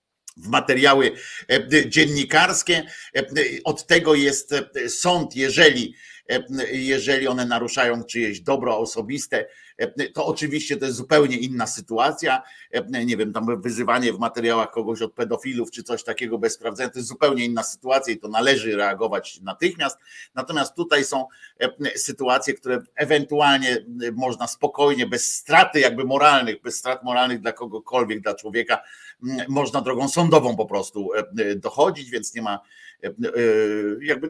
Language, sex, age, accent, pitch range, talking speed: Polish, male, 50-69, native, 115-150 Hz, 130 wpm